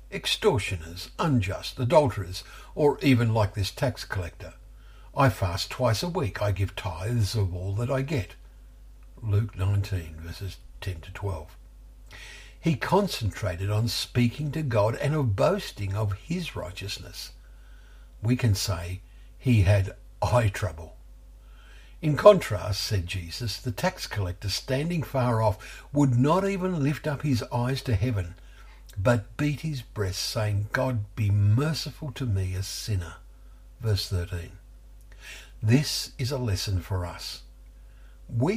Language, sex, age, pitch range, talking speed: English, male, 60-79, 95-125 Hz, 135 wpm